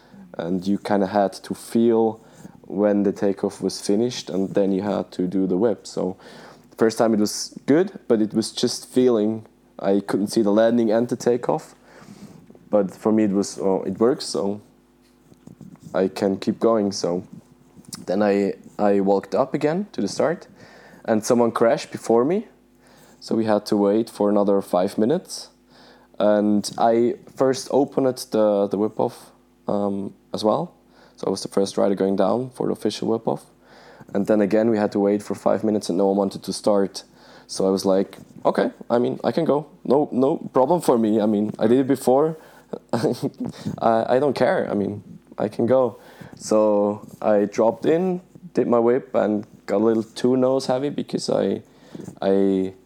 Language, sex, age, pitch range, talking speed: English, male, 20-39, 100-115 Hz, 185 wpm